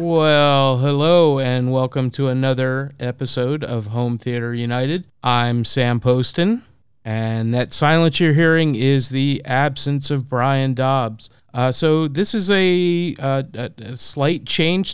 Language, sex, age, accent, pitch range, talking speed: English, male, 40-59, American, 125-150 Hz, 135 wpm